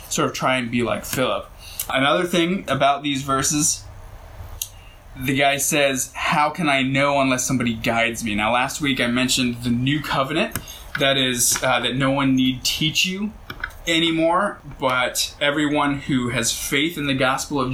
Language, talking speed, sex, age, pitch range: English, 170 wpm, male, 20-39, 115-135 Hz